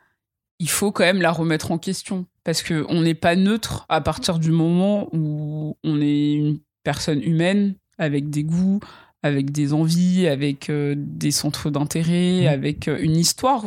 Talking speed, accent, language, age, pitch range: 165 wpm, French, French, 20-39, 155-185 Hz